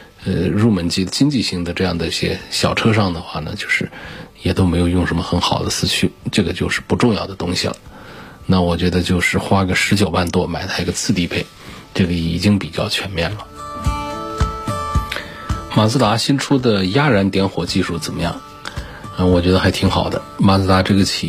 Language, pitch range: Chinese, 85-105 Hz